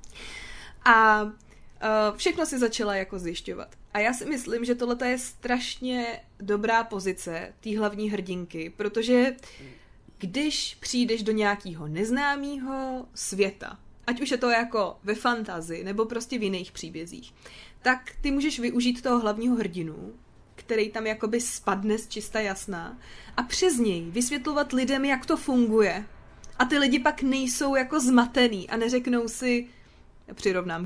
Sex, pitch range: female, 205-250 Hz